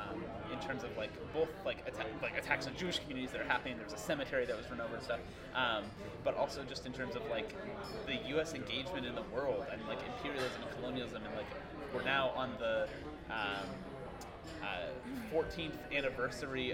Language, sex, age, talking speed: English, male, 30-49, 190 wpm